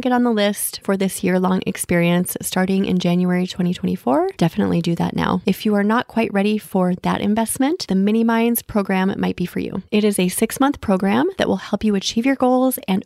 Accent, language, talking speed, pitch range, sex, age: American, English, 215 wpm, 185-225 Hz, female, 30-49